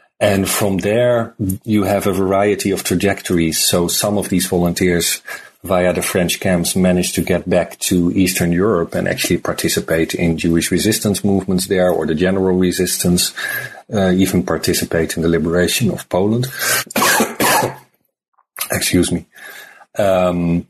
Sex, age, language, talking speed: male, 40-59, English, 140 wpm